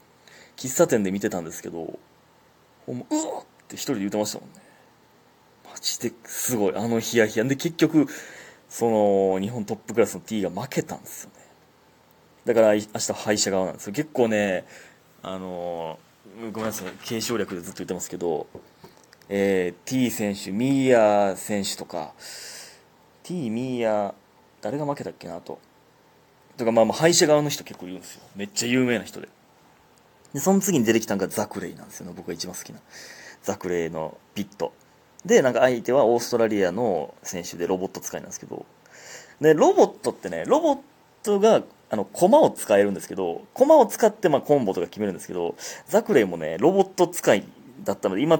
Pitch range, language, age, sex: 95-135 Hz, Japanese, 20-39, male